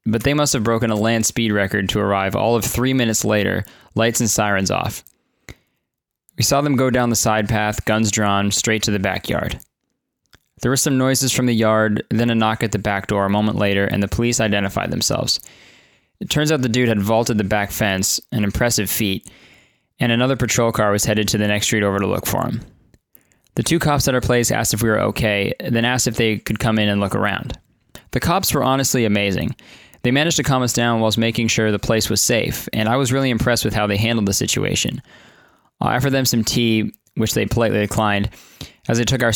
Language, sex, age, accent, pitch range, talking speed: English, male, 20-39, American, 105-120 Hz, 225 wpm